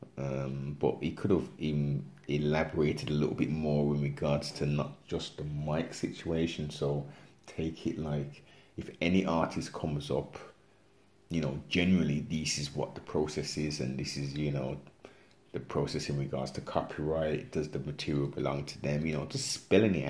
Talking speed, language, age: 175 wpm, English, 30-49